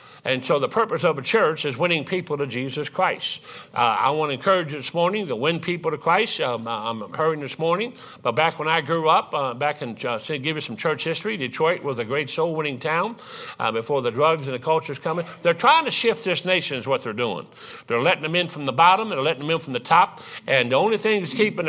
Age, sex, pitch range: 50-69, male, 160-205 Hz